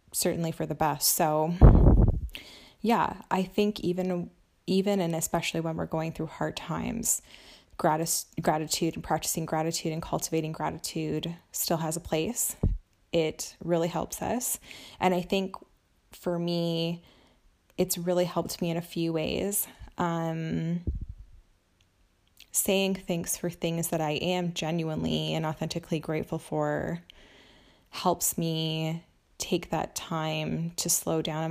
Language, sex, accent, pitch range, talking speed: English, female, American, 155-175 Hz, 130 wpm